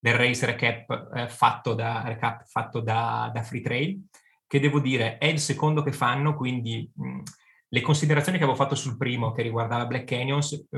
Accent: native